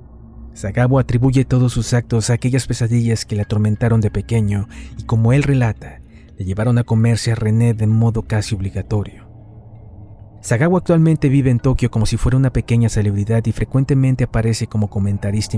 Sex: male